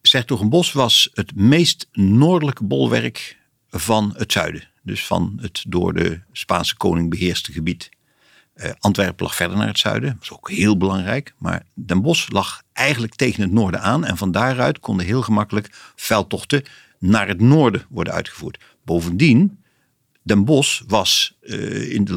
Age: 50-69